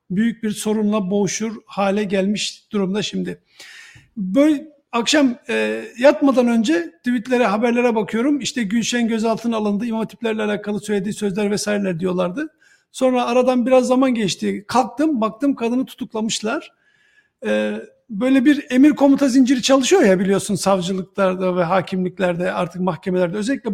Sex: male